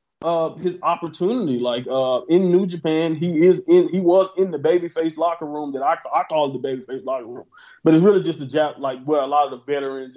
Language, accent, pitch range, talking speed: English, American, 135-170 Hz, 235 wpm